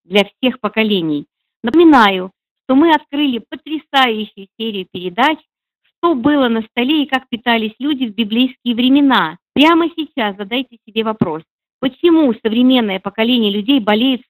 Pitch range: 215-270 Hz